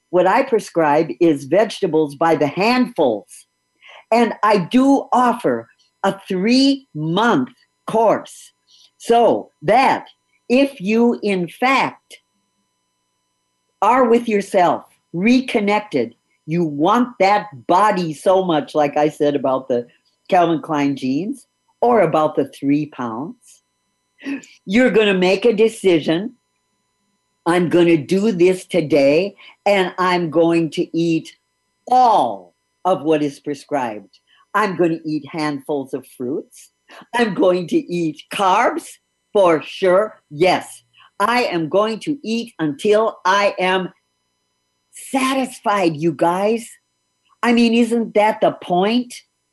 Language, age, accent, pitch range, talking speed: English, 50-69, American, 160-235 Hz, 120 wpm